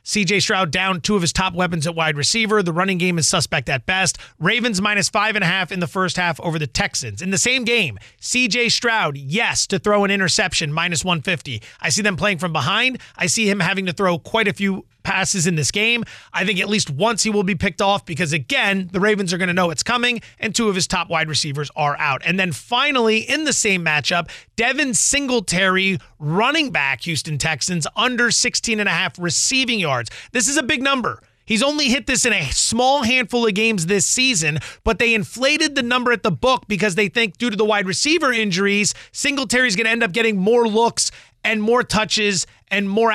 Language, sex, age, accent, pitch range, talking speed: English, male, 30-49, American, 170-230 Hz, 220 wpm